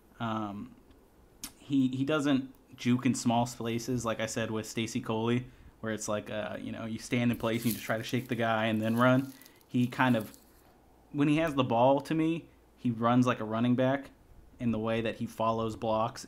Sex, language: male, English